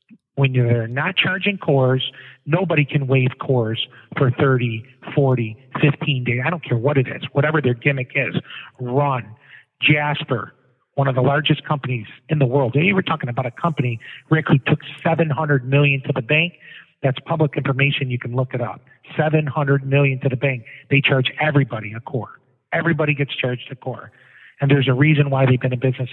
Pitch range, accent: 130-150 Hz, American